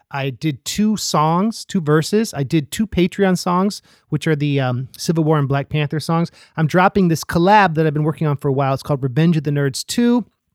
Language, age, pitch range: English, 30-49, 145-180 Hz